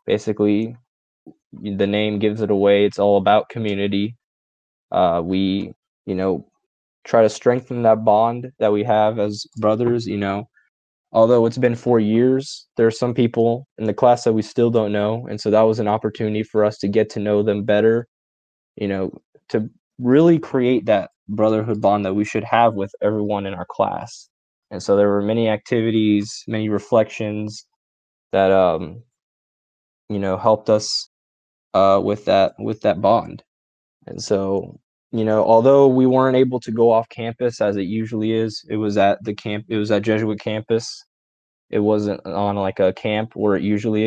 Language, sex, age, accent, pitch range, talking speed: English, male, 10-29, American, 100-115 Hz, 175 wpm